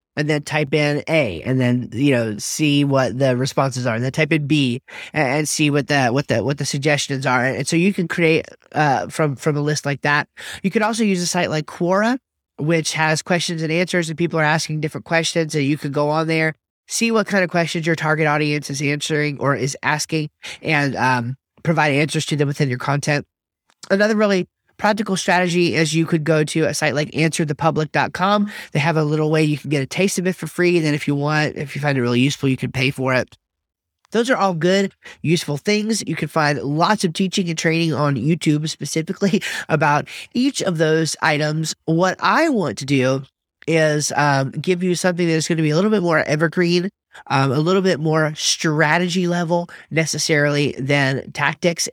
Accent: American